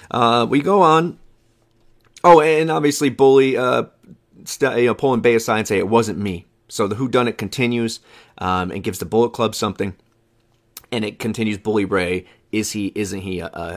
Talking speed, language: 185 wpm, English